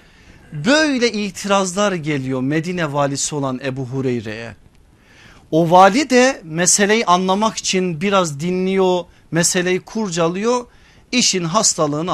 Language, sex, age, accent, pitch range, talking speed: Turkish, male, 50-69, native, 170-230 Hz, 100 wpm